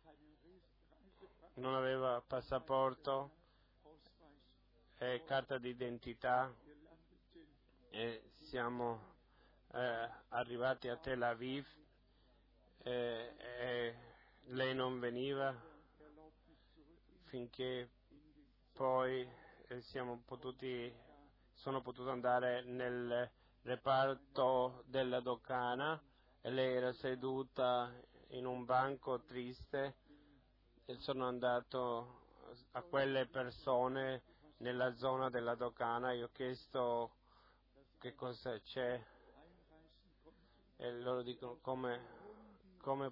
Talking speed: 80 wpm